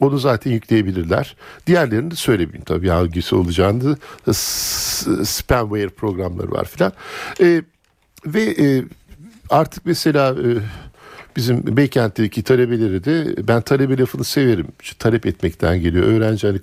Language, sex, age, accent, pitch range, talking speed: Turkish, male, 50-69, native, 95-130 Hz, 110 wpm